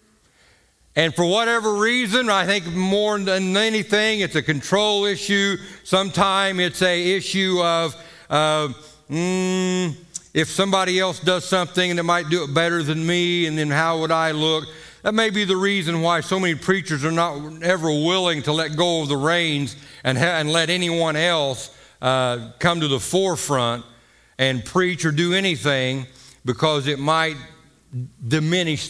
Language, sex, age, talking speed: English, male, 60-79, 160 wpm